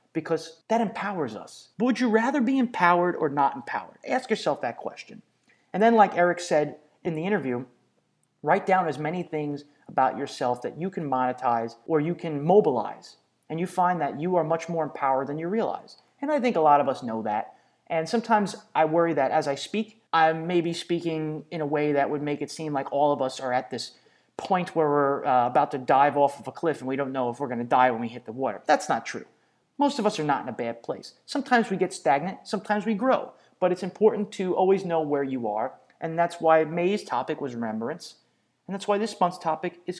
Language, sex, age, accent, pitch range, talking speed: English, male, 30-49, American, 140-190 Hz, 230 wpm